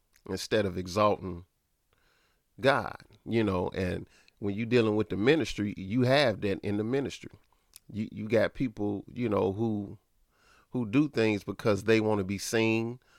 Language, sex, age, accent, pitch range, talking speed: English, male, 40-59, American, 95-115 Hz, 160 wpm